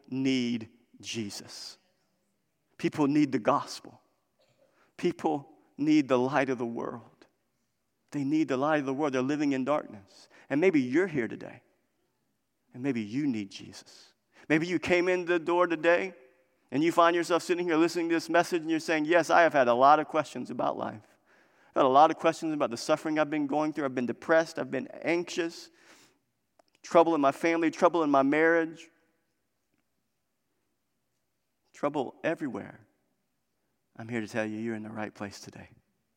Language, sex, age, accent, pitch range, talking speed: English, male, 50-69, American, 135-180 Hz, 175 wpm